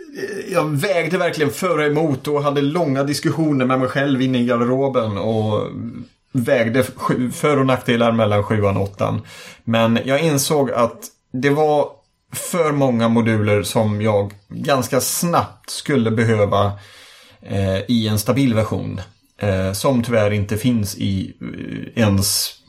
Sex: male